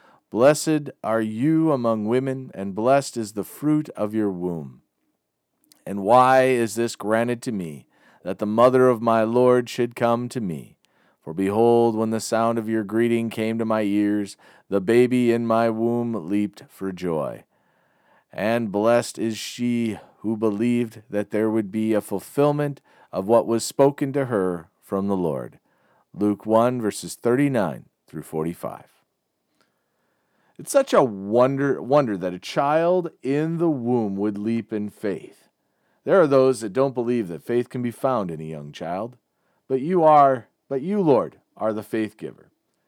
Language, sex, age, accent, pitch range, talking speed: English, male, 40-59, American, 105-130 Hz, 165 wpm